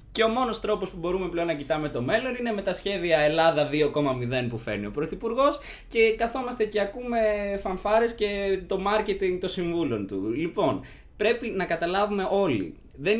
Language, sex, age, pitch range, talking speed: Greek, male, 20-39, 130-195 Hz, 175 wpm